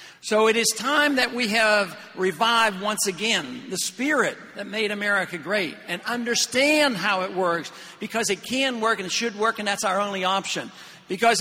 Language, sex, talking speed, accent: English, male, 185 wpm, American